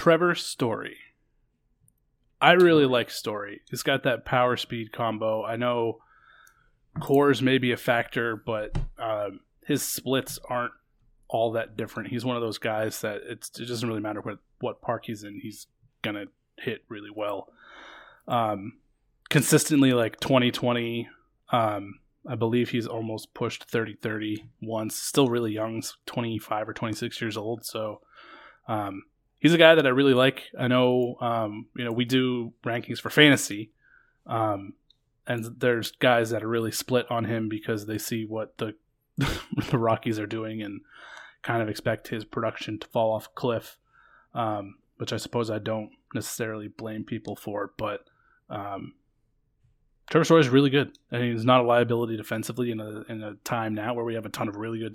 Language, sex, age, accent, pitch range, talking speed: English, male, 20-39, American, 110-125 Hz, 170 wpm